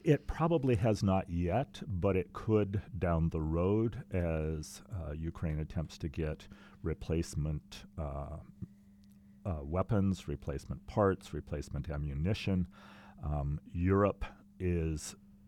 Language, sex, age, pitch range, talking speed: English, male, 40-59, 80-100 Hz, 110 wpm